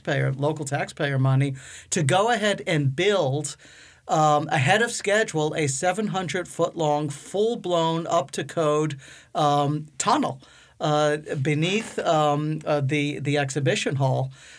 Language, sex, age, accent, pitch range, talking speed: English, male, 50-69, American, 145-175 Hz, 105 wpm